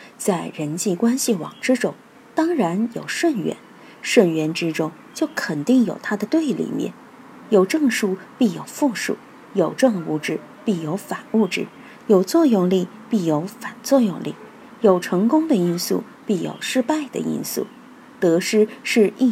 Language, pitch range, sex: Chinese, 180-265 Hz, female